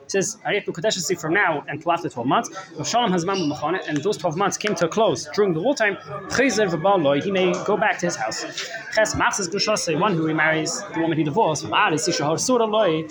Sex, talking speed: male, 155 wpm